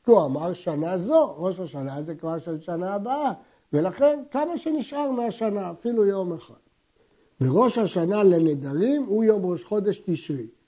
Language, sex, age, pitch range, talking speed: Hebrew, male, 60-79, 165-230 Hz, 145 wpm